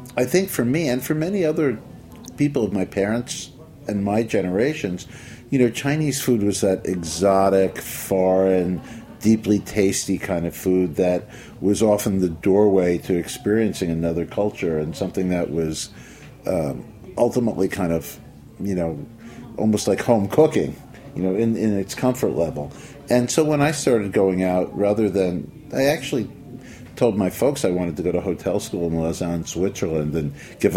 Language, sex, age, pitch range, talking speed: English, male, 50-69, 90-115 Hz, 165 wpm